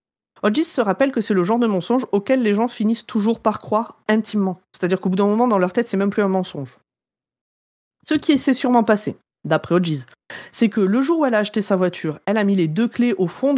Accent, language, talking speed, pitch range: French, French, 245 wpm, 175-235 Hz